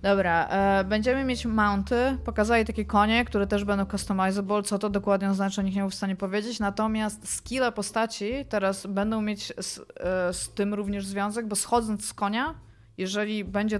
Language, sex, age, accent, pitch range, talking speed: Polish, female, 20-39, native, 190-215 Hz, 165 wpm